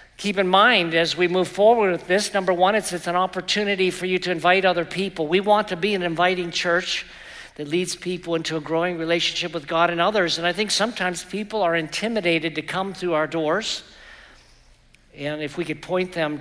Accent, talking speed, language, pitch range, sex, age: American, 210 wpm, English, 155-180 Hz, male, 50-69